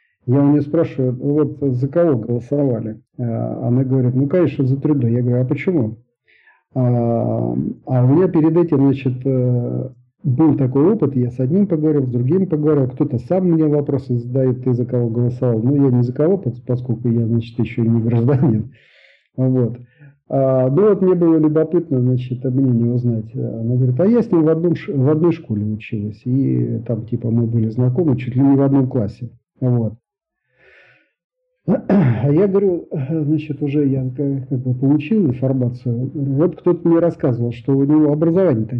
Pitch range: 125-155 Hz